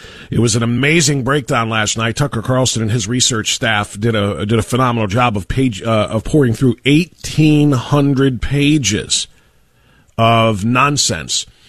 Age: 40-59